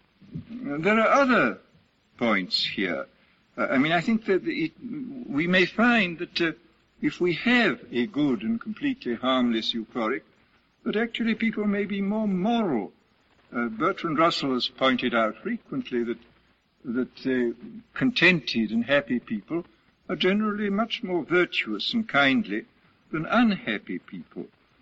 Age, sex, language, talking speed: 60-79, male, English, 140 wpm